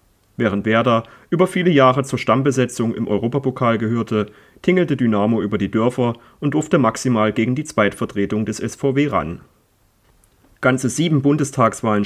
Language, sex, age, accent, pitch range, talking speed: German, male, 30-49, German, 105-130 Hz, 135 wpm